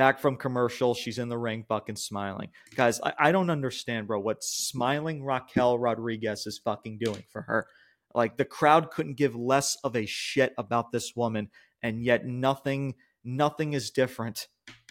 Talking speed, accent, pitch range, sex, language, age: 170 wpm, American, 115-145 Hz, male, English, 30-49